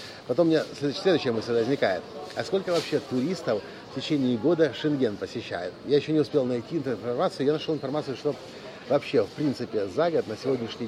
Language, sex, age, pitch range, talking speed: Russian, male, 50-69, 120-150 Hz, 175 wpm